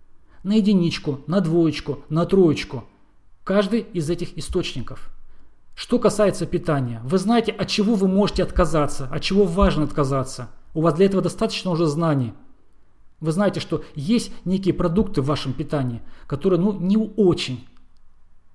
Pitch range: 135-195 Hz